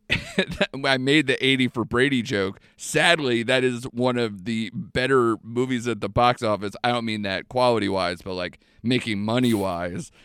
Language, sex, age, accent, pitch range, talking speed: English, male, 30-49, American, 95-125 Hz, 175 wpm